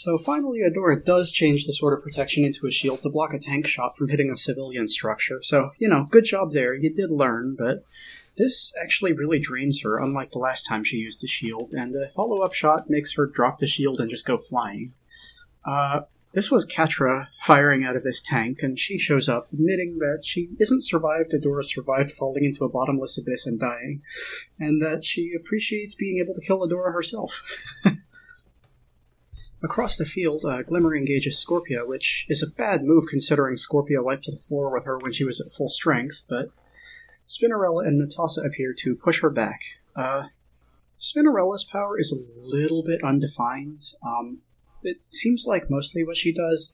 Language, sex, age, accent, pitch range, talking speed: English, male, 30-49, American, 130-165 Hz, 185 wpm